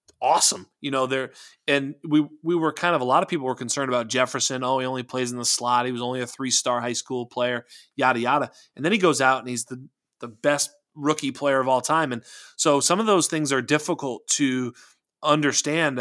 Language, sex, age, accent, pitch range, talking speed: English, male, 30-49, American, 120-145 Hz, 225 wpm